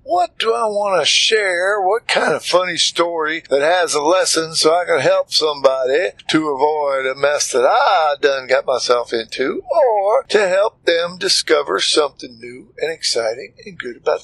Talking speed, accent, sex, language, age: 175 wpm, American, male, English, 50-69